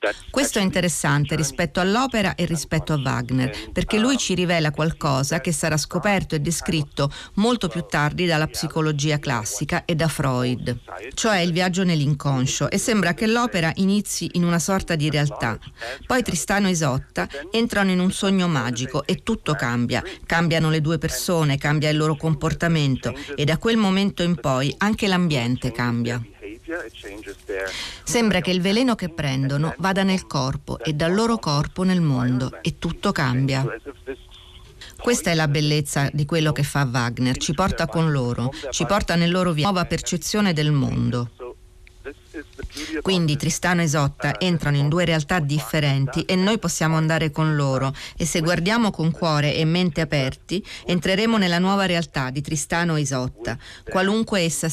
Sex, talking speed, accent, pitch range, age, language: female, 160 wpm, native, 140-185 Hz, 40-59, Italian